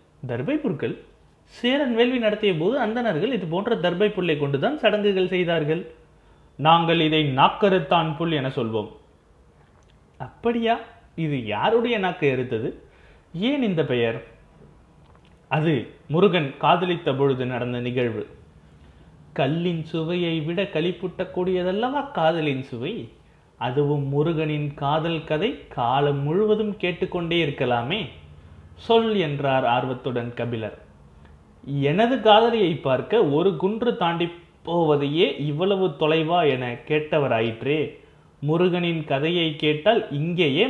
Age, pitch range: 30-49, 135-185 Hz